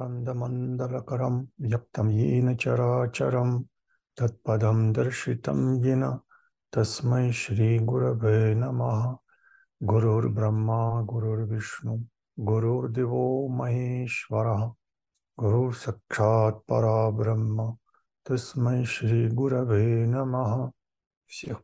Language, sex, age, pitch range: English, male, 50-69, 110-130 Hz